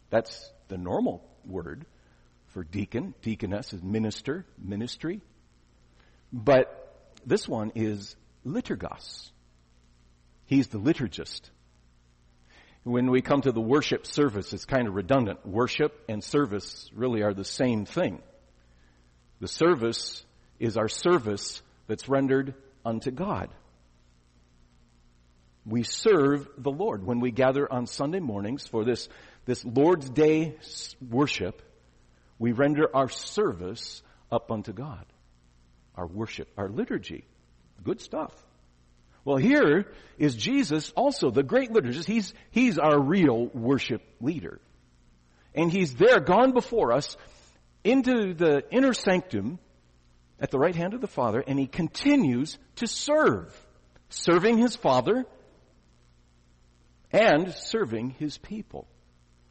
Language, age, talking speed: English, 50-69, 120 wpm